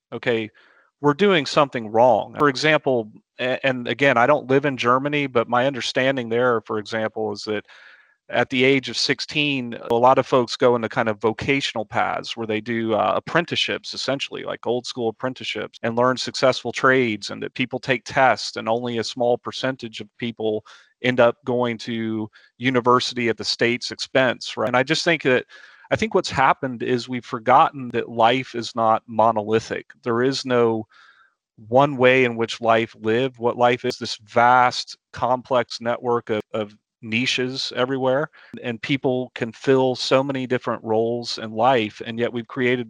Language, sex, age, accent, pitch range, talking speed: English, male, 40-59, American, 115-130 Hz, 175 wpm